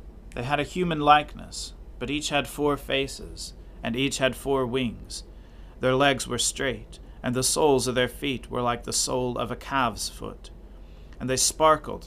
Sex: male